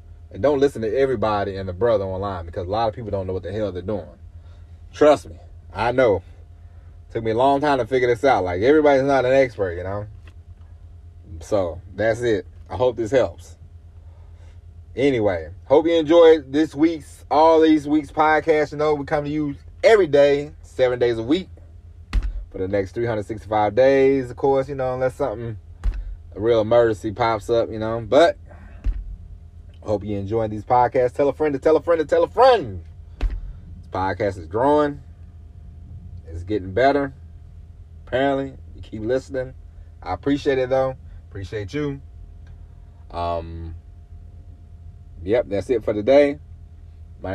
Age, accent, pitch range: 30-49, American, 85-130 Hz